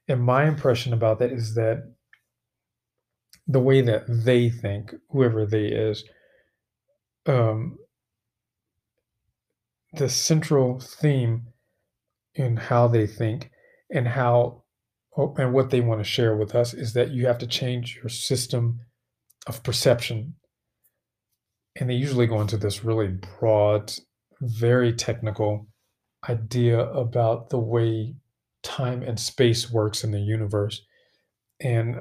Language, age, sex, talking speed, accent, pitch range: English, 40-59, male, 120 wpm, American, 115-130 Hz